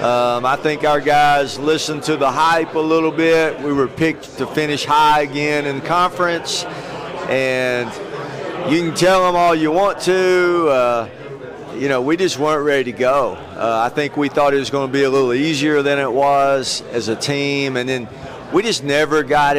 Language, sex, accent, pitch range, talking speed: English, male, American, 130-155 Hz, 195 wpm